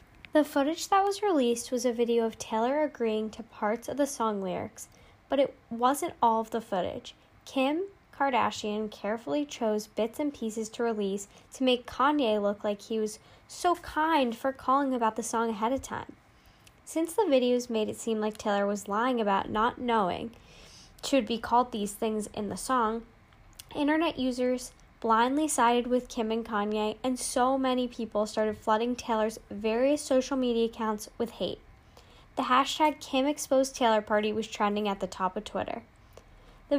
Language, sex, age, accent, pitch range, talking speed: English, female, 10-29, American, 220-270 Hz, 175 wpm